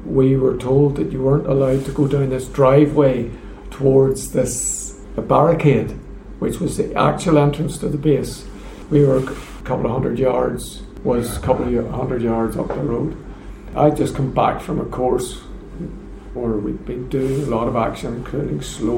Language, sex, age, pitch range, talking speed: English, male, 50-69, 120-145 Hz, 180 wpm